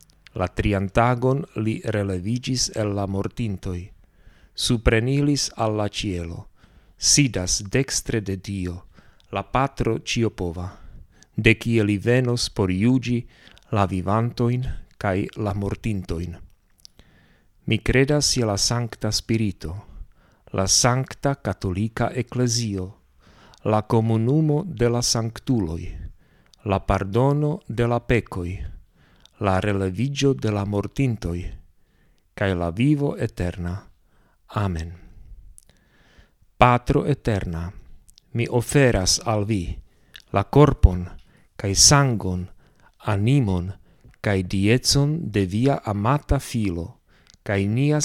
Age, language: 50-69, Slovak